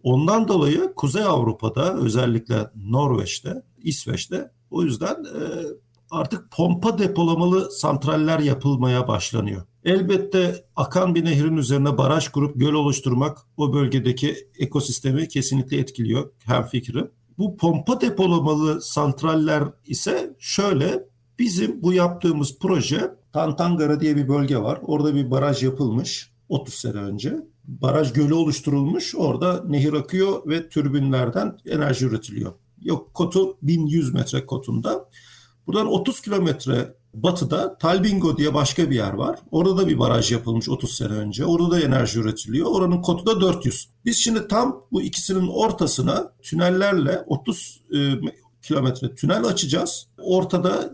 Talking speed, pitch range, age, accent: 125 wpm, 130-175 Hz, 50-69, native